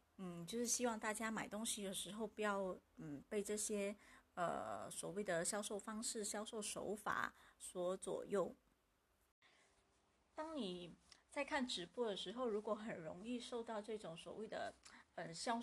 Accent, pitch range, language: American, 200-245 Hz, Chinese